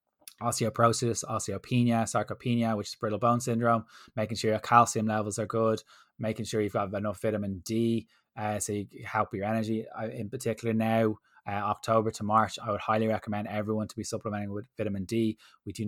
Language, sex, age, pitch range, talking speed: English, male, 20-39, 105-115 Hz, 180 wpm